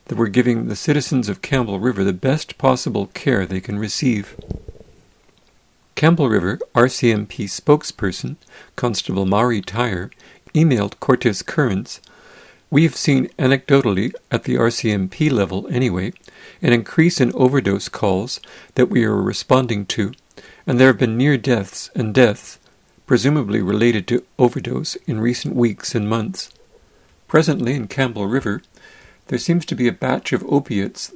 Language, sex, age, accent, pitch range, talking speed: English, male, 50-69, American, 105-135 Hz, 140 wpm